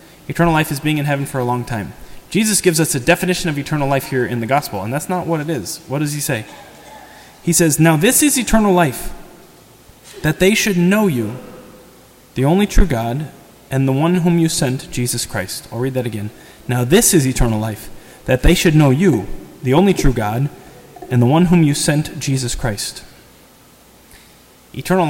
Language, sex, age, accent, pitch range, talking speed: English, male, 20-39, American, 125-155 Hz, 200 wpm